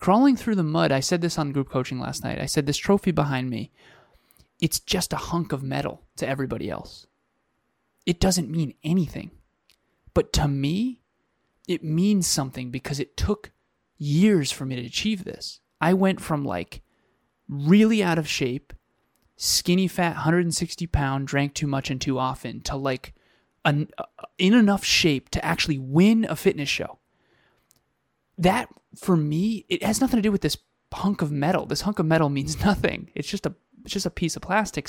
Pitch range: 135-180 Hz